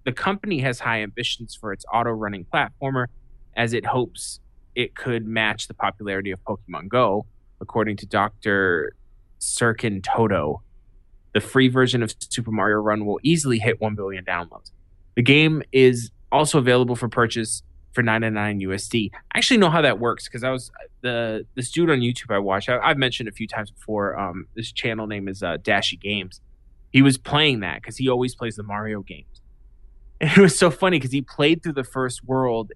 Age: 20-39